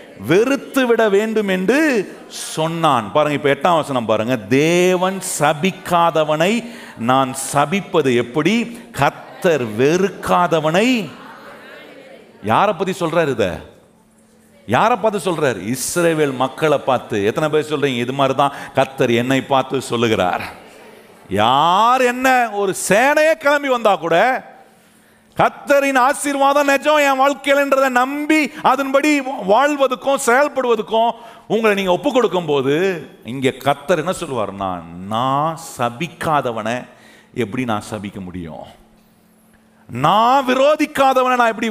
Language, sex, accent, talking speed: Tamil, male, native, 50 wpm